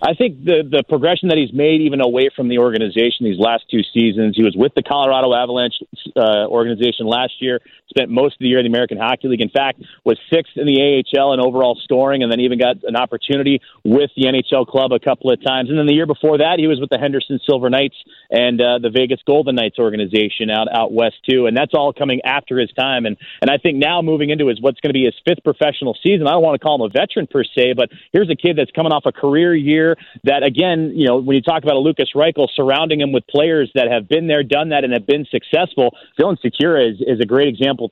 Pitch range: 125-150 Hz